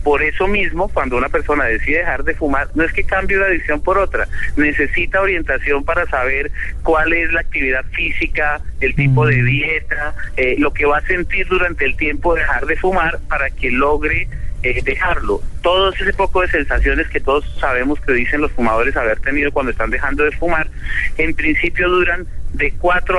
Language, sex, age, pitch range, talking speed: Spanish, male, 40-59, 140-180 Hz, 185 wpm